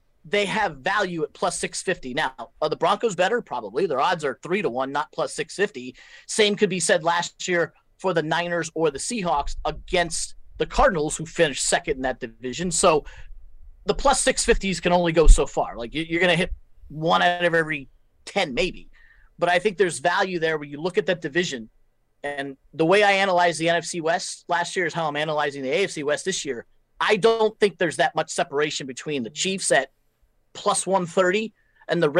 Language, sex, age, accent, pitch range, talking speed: English, male, 40-59, American, 155-195 Hz, 200 wpm